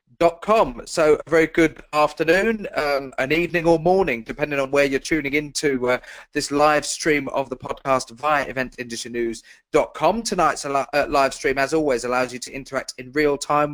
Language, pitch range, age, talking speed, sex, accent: English, 130-160 Hz, 30-49, 190 wpm, male, British